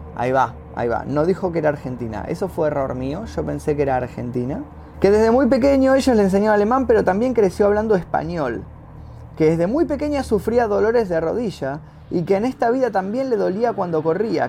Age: 20-39